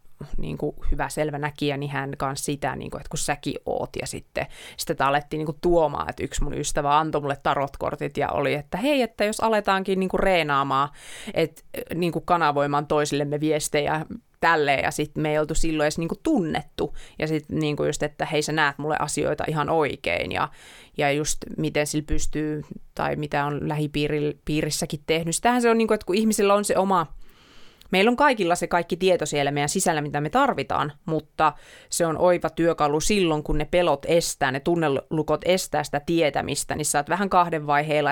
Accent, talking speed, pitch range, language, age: native, 195 wpm, 145-170 Hz, Finnish, 30-49